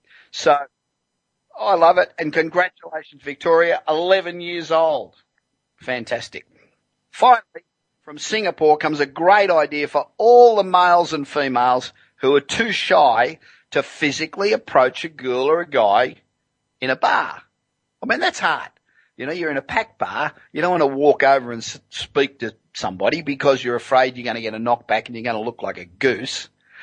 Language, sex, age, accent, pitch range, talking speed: English, male, 50-69, Australian, 135-190 Hz, 170 wpm